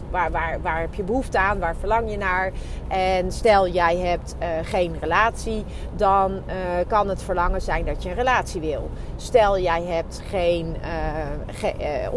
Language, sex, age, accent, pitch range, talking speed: Dutch, female, 30-49, Dutch, 170-225 Hz, 170 wpm